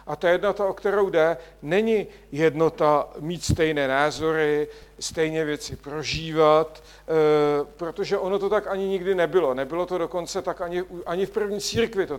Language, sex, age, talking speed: Czech, male, 50-69, 150 wpm